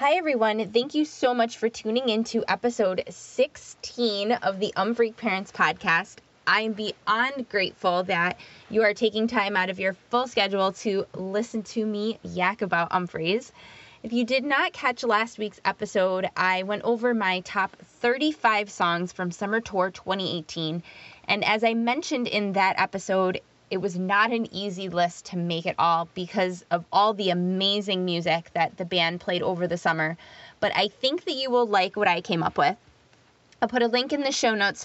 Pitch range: 185-225 Hz